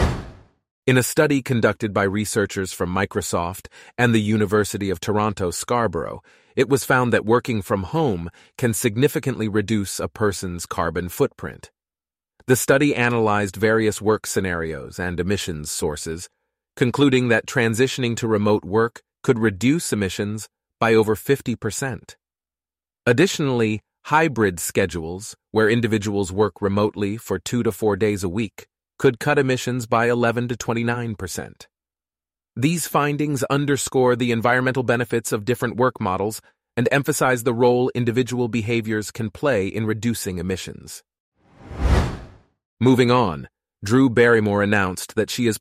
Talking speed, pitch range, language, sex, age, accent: 130 wpm, 95-125 Hz, English, male, 30-49, American